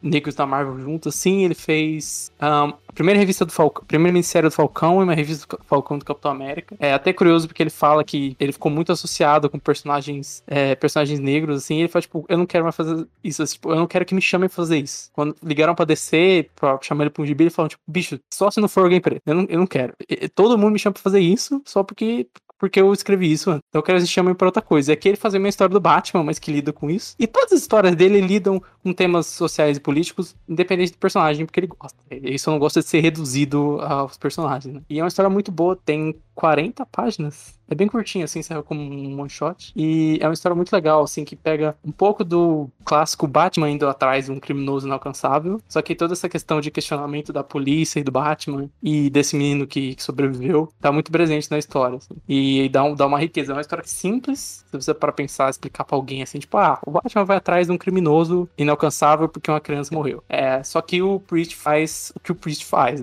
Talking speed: 240 wpm